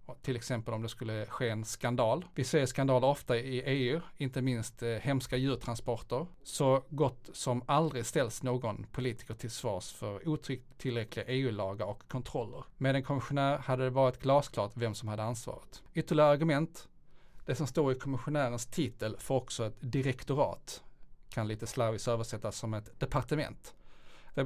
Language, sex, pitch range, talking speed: Swedish, male, 115-140 Hz, 155 wpm